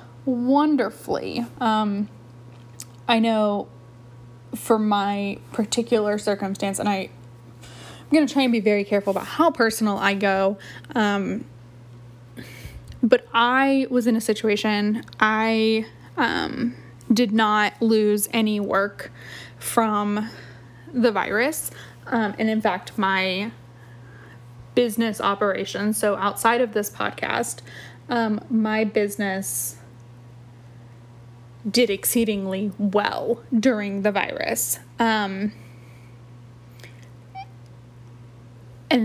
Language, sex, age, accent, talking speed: English, female, 10-29, American, 100 wpm